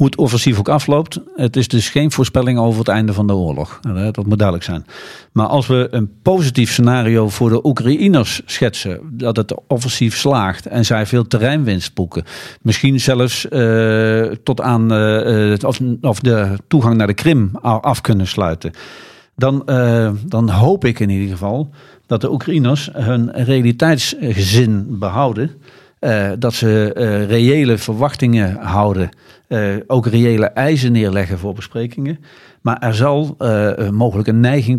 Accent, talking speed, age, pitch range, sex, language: Dutch, 150 wpm, 50-69, 110-130 Hz, male, Dutch